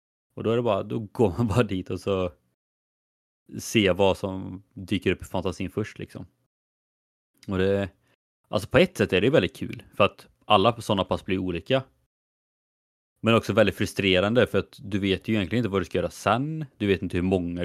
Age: 30-49